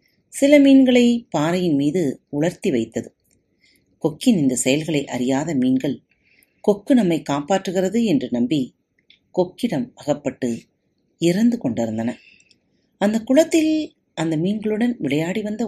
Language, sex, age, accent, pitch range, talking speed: Tamil, female, 40-59, native, 140-235 Hz, 100 wpm